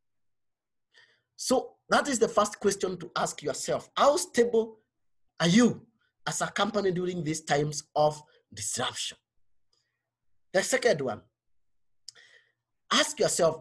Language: English